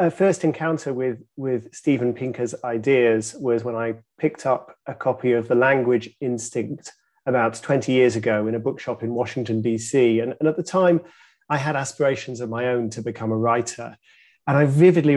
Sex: male